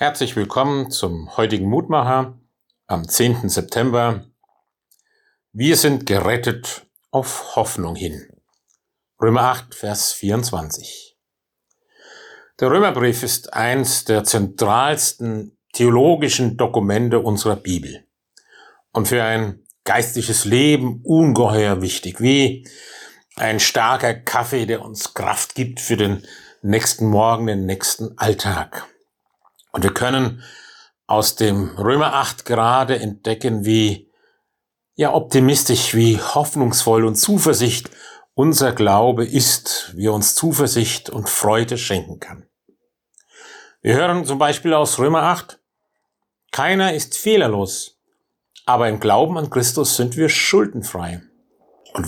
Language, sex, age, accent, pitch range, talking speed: German, male, 50-69, German, 110-140 Hz, 110 wpm